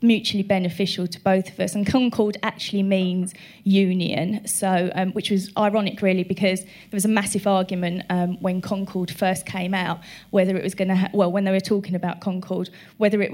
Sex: female